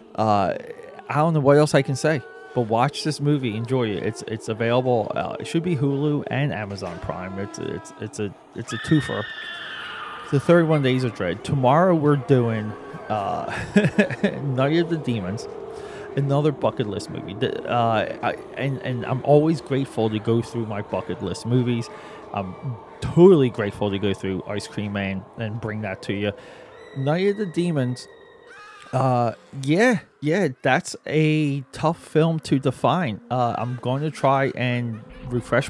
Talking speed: 165 wpm